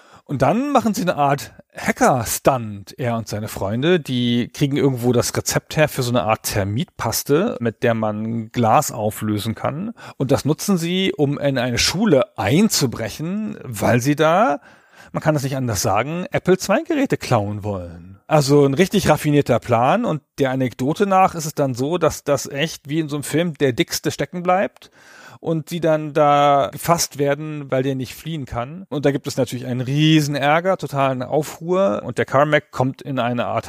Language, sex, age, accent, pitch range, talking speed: German, male, 40-59, German, 120-155 Hz, 185 wpm